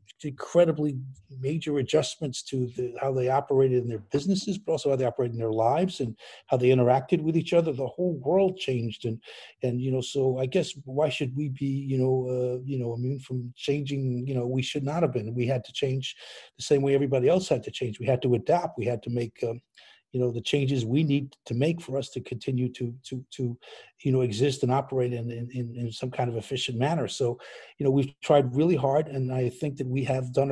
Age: 50-69